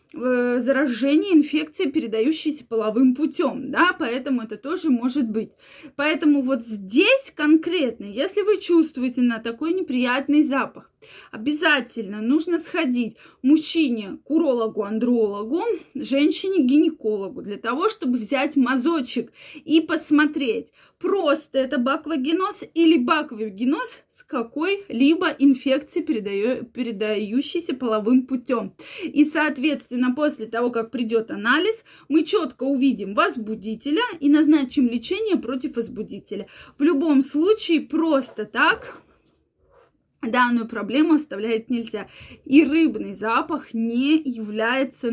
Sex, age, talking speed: female, 20-39, 105 wpm